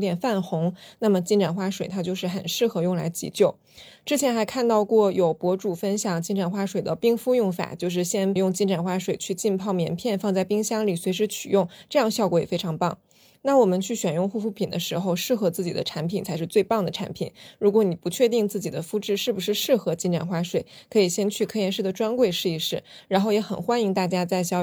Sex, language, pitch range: female, Chinese, 175-205 Hz